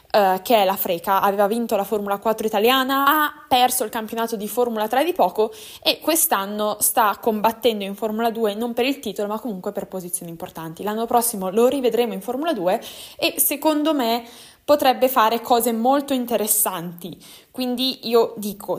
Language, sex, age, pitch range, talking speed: Italian, female, 20-39, 200-240 Hz, 170 wpm